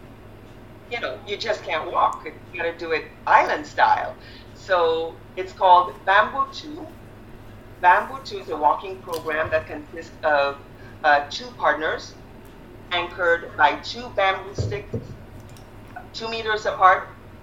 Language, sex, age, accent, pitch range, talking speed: English, female, 40-59, American, 125-210 Hz, 125 wpm